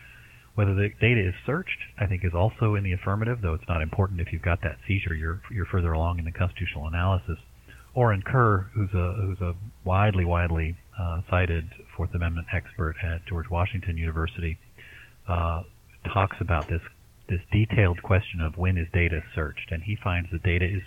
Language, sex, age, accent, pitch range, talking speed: English, male, 40-59, American, 85-105 Hz, 185 wpm